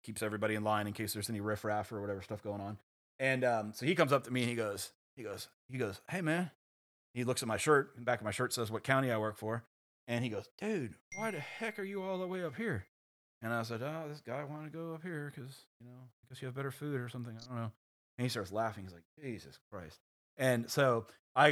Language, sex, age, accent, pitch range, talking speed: English, male, 30-49, American, 105-135 Hz, 275 wpm